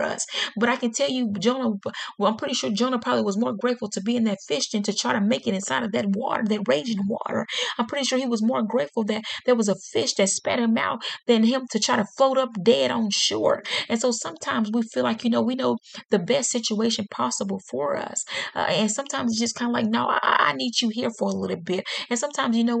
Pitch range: 205-250 Hz